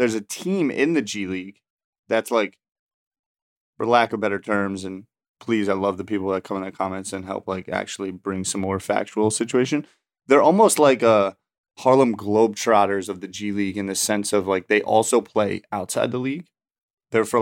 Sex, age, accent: male, 20-39, American